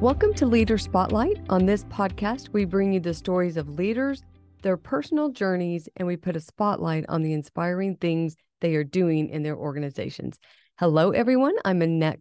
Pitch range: 160-200 Hz